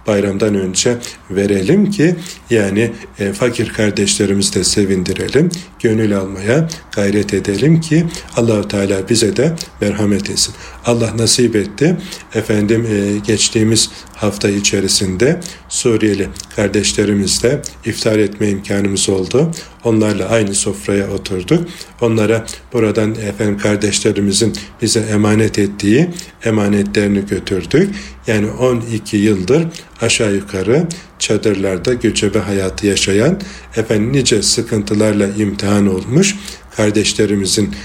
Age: 40-59